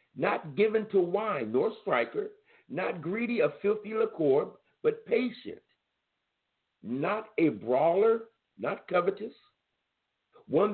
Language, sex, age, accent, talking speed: English, male, 60-79, American, 105 wpm